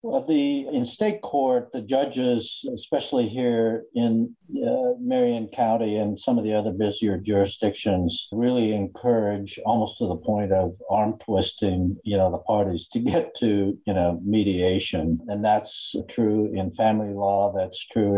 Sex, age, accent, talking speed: male, 60-79, American, 155 wpm